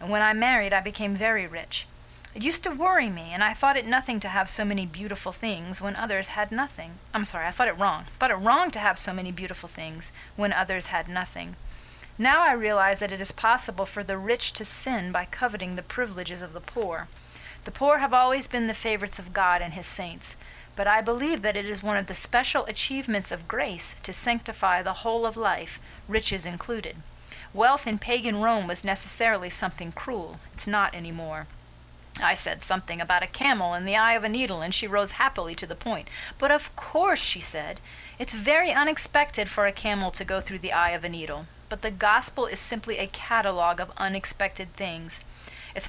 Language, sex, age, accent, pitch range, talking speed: English, female, 40-59, American, 180-230 Hz, 210 wpm